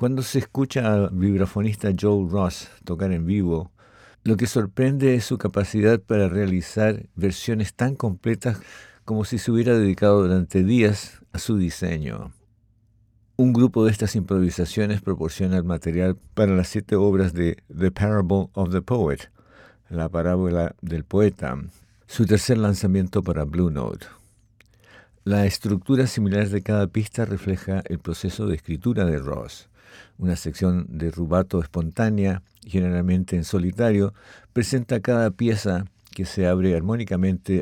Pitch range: 90-110 Hz